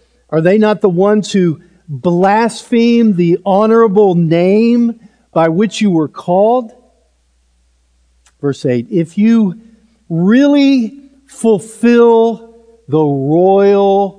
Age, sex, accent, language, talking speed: 50-69, male, American, English, 95 wpm